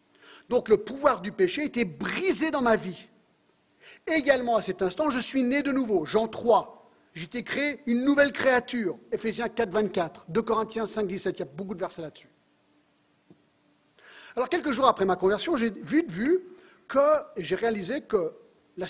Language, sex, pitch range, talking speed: French, male, 190-275 Hz, 180 wpm